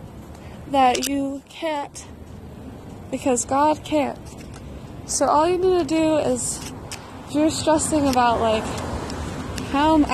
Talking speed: 120 wpm